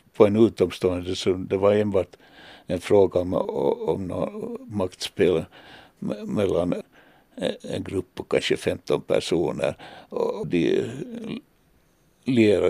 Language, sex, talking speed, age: Finnish, male, 105 wpm, 60-79